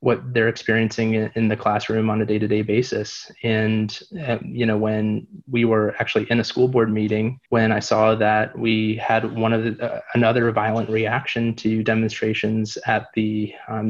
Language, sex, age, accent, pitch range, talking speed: English, male, 20-39, American, 110-115 Hz, 185 wpm